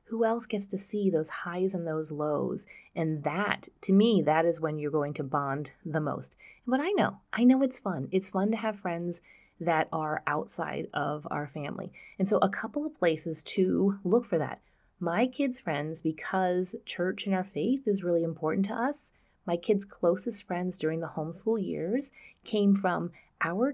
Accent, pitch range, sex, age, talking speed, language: American, 170-230 Hz, female, 30-49, 190 wpm, English